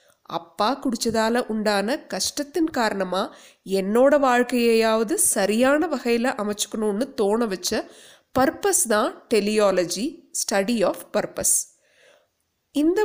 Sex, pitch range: female, 200-255 Hz